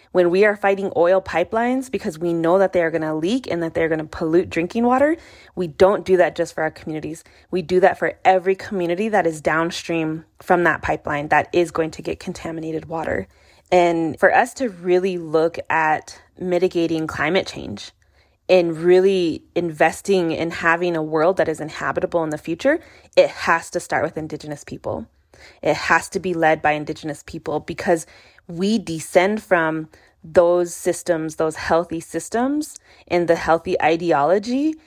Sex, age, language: female, 20-39, English